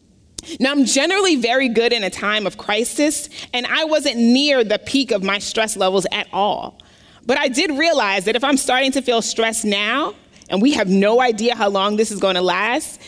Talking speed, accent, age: 210 wpm, American, 30-49